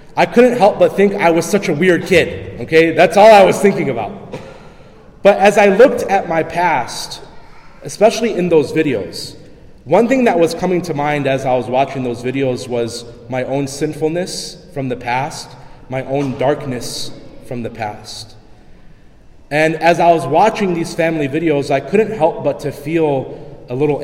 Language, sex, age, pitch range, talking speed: English, male, 30-49, 135-180 Hz, 175 wpm